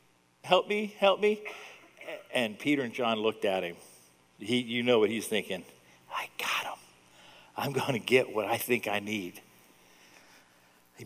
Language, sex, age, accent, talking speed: English, male, 50-69, American, 155 wpm